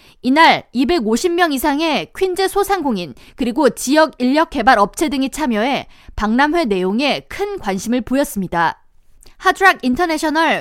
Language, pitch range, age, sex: Korean, 245-340 Hz, 20-39, female